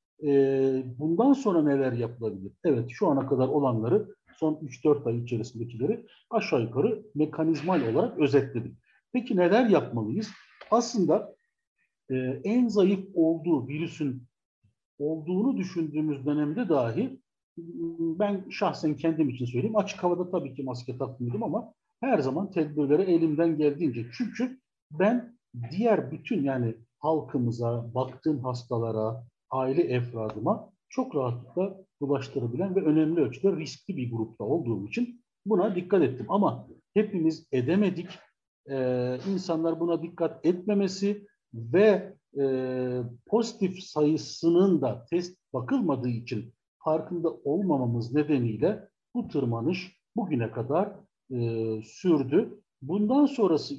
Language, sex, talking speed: Turkish, male, 110 wpm